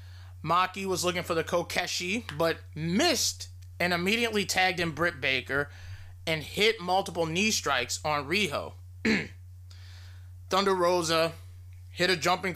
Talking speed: 125 wpm